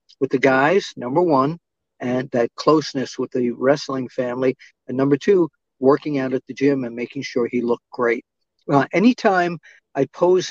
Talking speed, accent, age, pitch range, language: 170 wpm, American, 50-69, 125-160 Hz, English